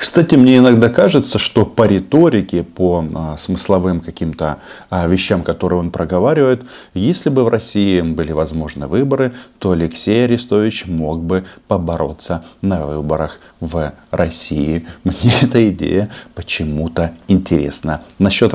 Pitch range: 85-100 Hz